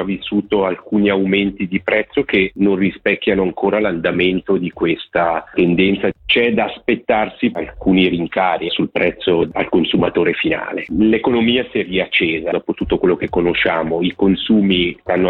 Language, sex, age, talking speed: Italian, male, 40-59, 135 wpm